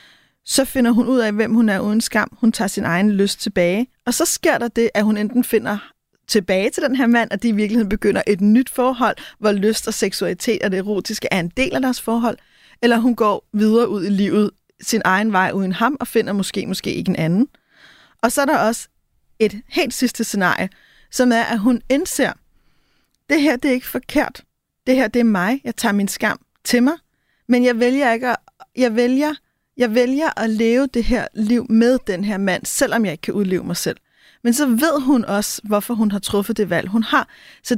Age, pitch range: 30-49, 205-245 Hz